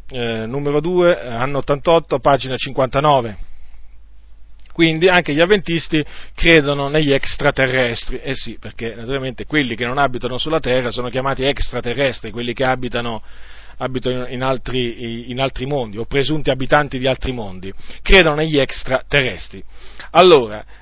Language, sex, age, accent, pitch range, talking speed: Italian, male, 40-59, native, 120-165 Hz, 135 wpm